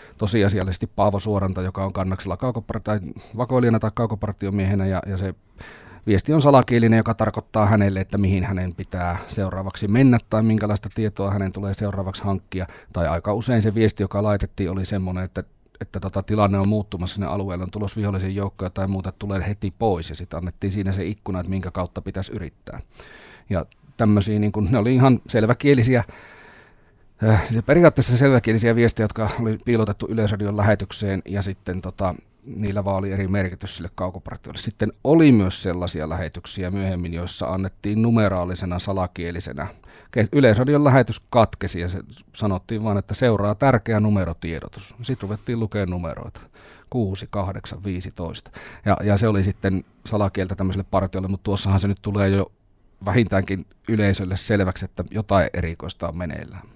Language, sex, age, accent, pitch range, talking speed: Finnish, male, 30-49, native, 95-110 Hz, 155 wpm